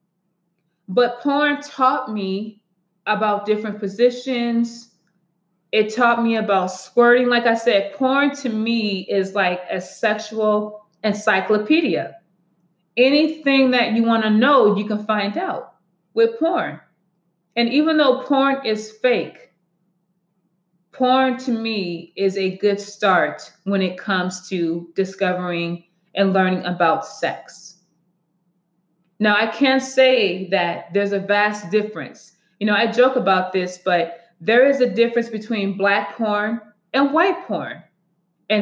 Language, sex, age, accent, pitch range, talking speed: English, female, 20-39, American, 180-230 Hz, 130 wpm